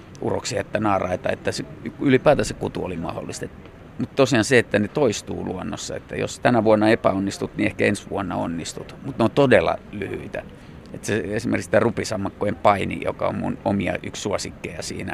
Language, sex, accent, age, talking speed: Finnish, male, native, 30-49, 175 wpm